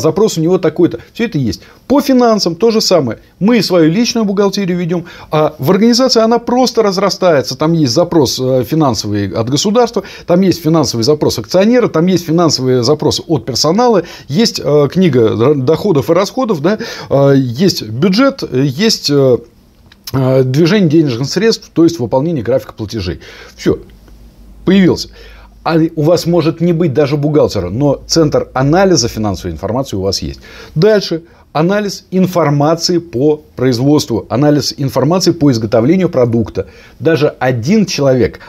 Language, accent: Russian, native